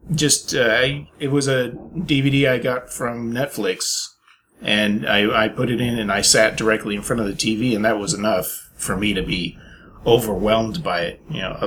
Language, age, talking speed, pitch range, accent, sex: English, 30-49, 190 wpm, 110-140 Hz, American, male